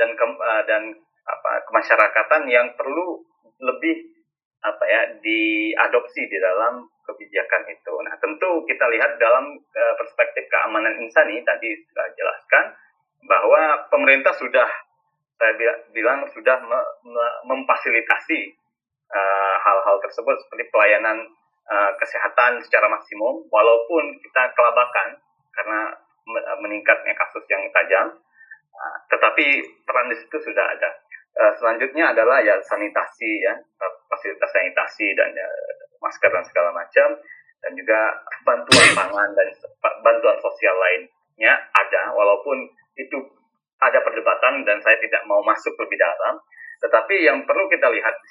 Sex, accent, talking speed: male, native, 120 wpm